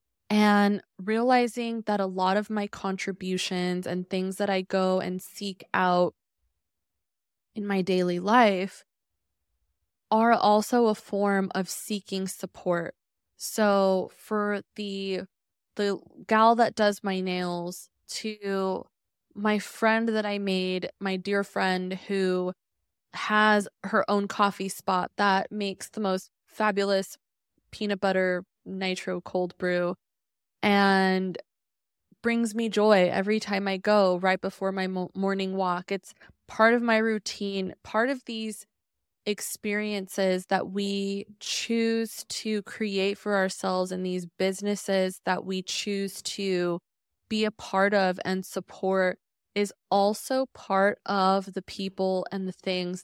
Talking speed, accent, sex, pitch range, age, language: 125 wpm, American, female, 185-205 Hz, 20-39, English